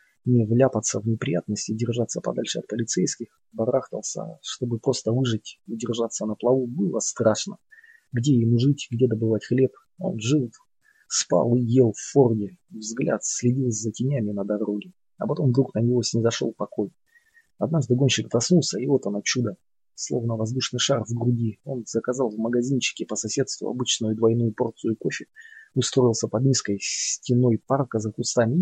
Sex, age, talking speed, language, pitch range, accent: male, 20-39, 155 wpm, Russian, 110-130 Hz, native